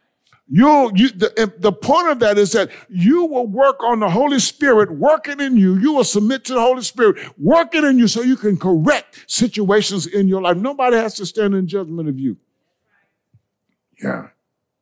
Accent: American